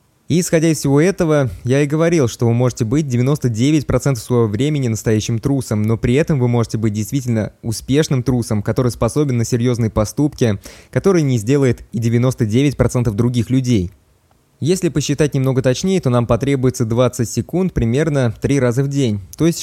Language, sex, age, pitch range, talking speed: Russian, male, 20-39, 115-140 Hz, 160 wpm